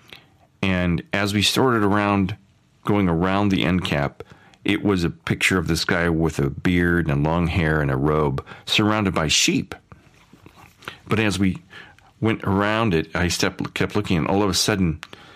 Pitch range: 85-110 Hz